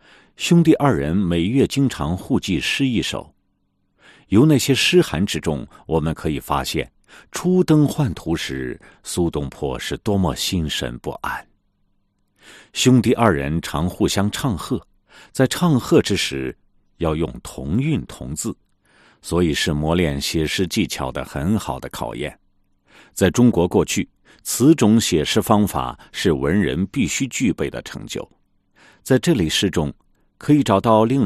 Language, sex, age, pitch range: Chinese, male, 50-69, 80-125 Hz